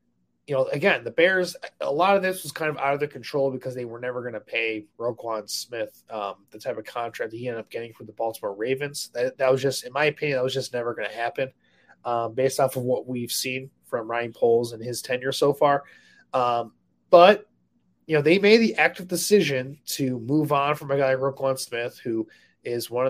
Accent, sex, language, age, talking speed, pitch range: American, male, English, 20-39, 230 wpm, 125-150 Hz